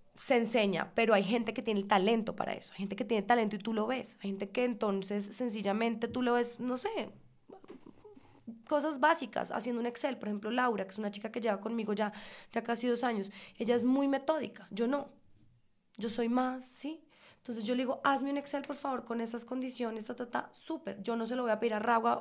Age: 20-39